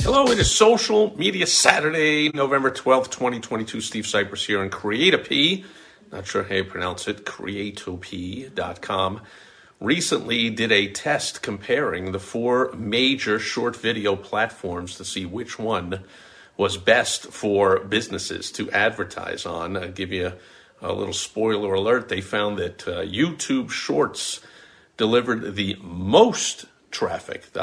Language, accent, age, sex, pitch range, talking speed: English, American, 50-69, male, 95-115 Hz, 135 wpm